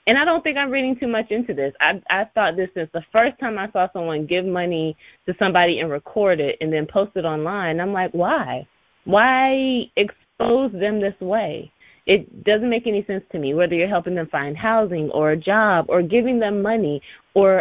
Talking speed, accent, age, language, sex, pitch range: 210 wpm, American, 20-39, English, female, 170-225 Hz